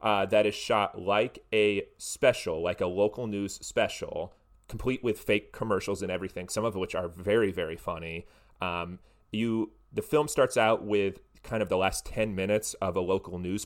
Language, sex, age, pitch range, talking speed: English, male, 30-49, 95-110 Hz, 185 wpm